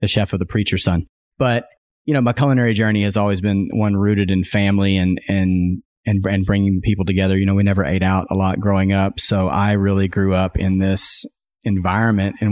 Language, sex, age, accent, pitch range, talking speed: English, male, 30-49, American, 95-105 Hz, 215 wpm